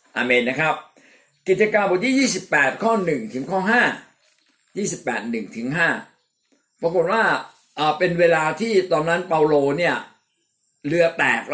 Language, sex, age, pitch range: Thai, male, 60-79, 140-190 Hz